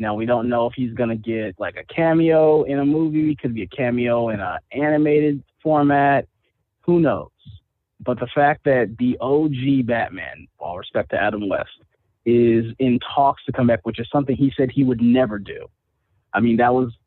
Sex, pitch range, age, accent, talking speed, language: male, 115-140 Hz, 20-39, American, 195 wpm, English